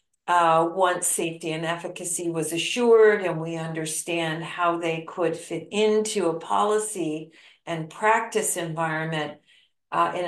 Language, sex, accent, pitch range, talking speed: English, female, American, 160-190 Hz, 130 wpm